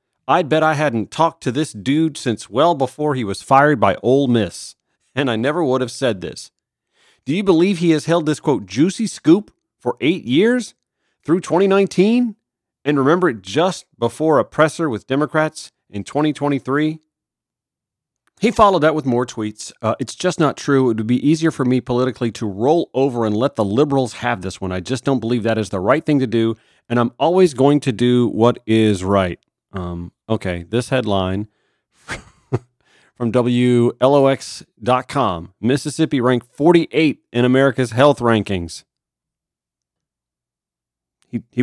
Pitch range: 115-150 Hz